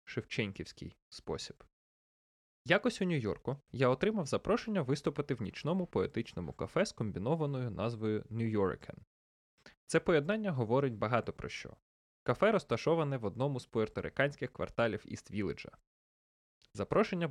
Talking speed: 120 wpm